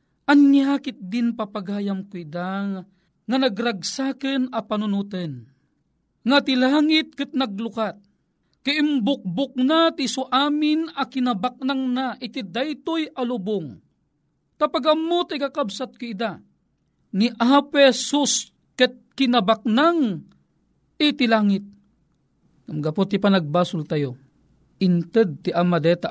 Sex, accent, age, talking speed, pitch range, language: male, native, 40-59, 90 wpm, 180-260 Hz, Filipino